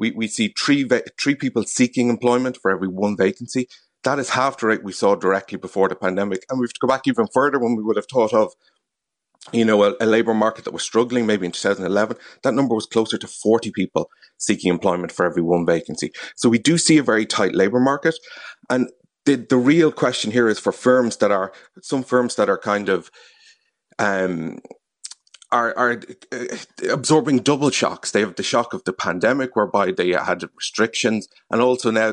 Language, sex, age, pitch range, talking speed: English, male, 30-49, 105-125 Hz, 210 wpm